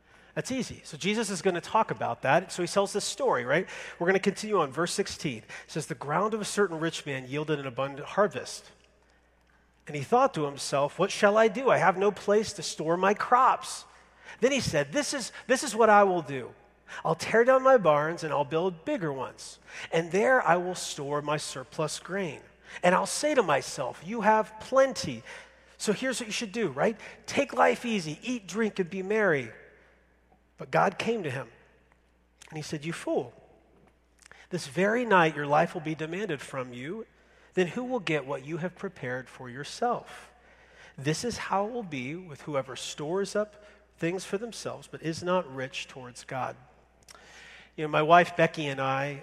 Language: English